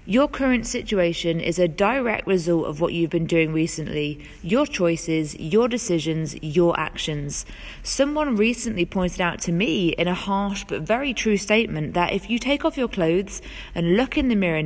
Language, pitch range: English, 170-235 Hz